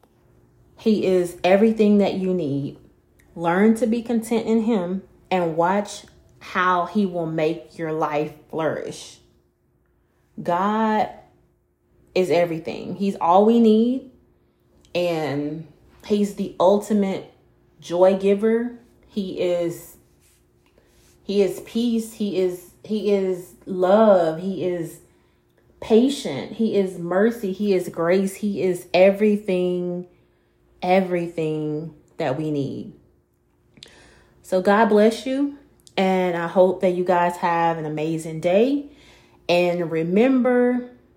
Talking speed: 110 wpm